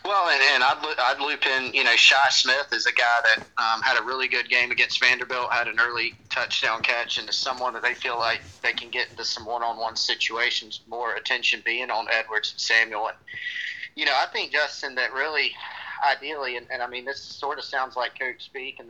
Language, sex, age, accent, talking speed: English, male, 30-49, American, 220 wpm